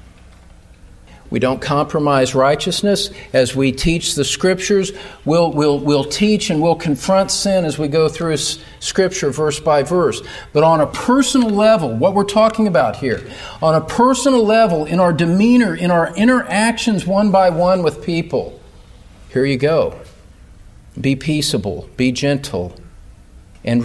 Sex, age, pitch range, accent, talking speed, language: male, 50-69, 105-165 Hz, American, 145 wpm, English